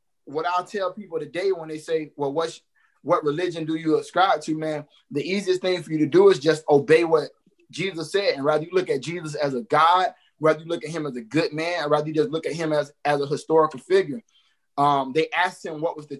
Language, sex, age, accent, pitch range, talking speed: English, male, 20-39, American, 150-195 Hz, 245 wpm